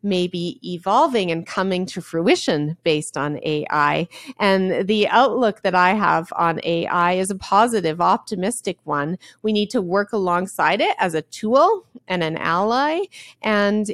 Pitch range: 170-225 Hz